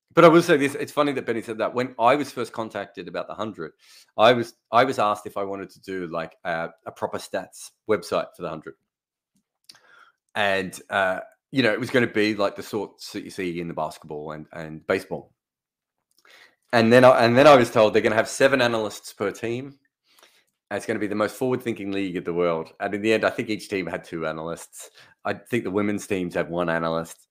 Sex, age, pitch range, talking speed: male, 30-49, 100-160 Hz, 235 wpm